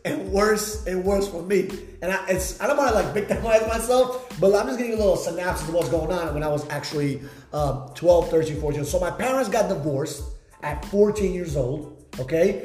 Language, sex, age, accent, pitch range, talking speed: English, male, 20-39, American, 160-195 Hz, 215 wpm